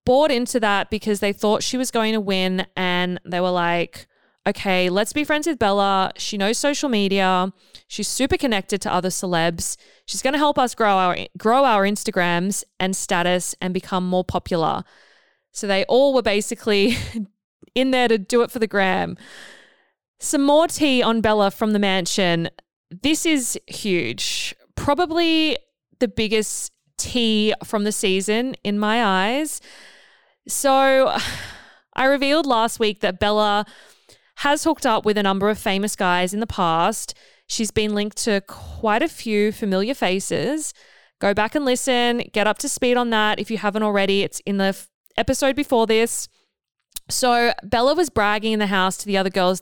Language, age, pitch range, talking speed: English, 20-39, 190-245 Hz, 170 wpm